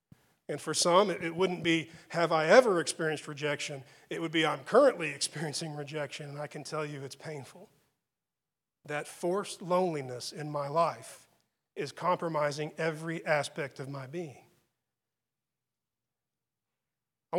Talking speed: 135 wpm